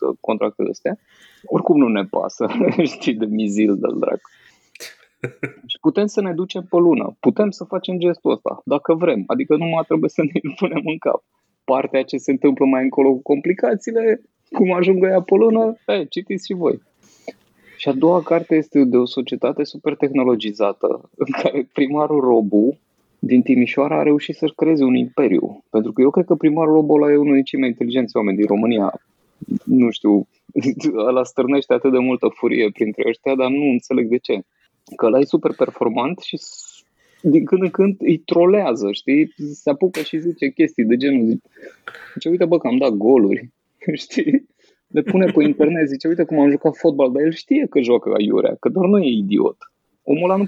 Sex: male